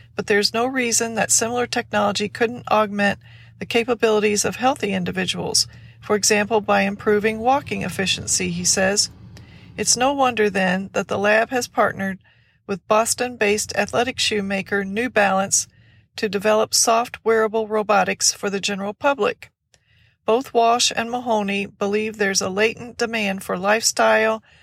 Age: 40-59